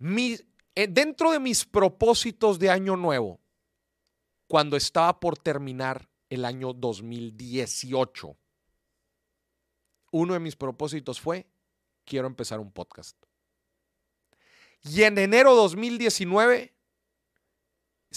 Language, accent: Spanish, Mexican